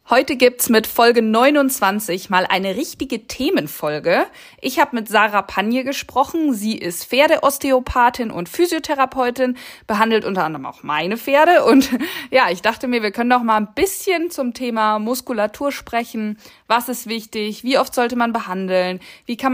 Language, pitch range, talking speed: German, 205-275 Hz, 160 wpm